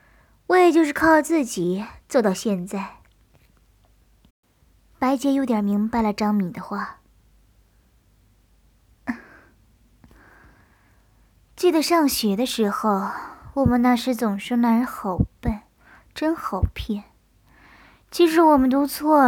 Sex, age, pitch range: male, 20-39, 190-255 Hz